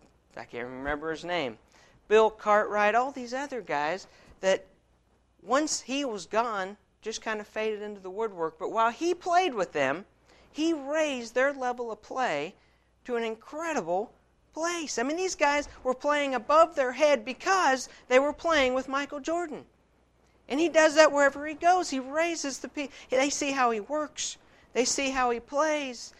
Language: English